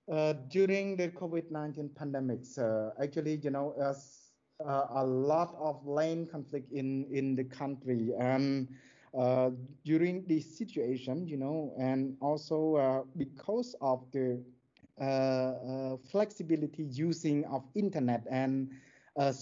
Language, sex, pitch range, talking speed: English, male, 130-155 Hz, 130 wpm